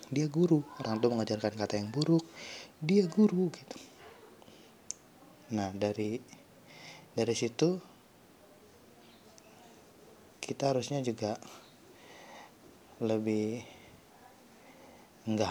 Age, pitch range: 20-39, 110-125 Hz